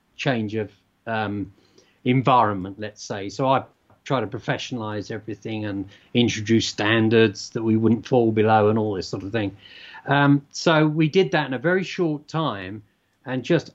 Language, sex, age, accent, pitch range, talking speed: English, male, 40-59, British, 110-135 Hz, 165 wpm